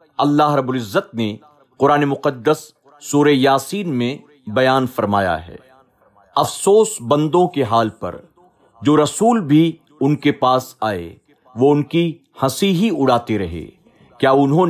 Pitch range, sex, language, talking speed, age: 125-160 Hz, male, Urdu, 130 wpm, 50-69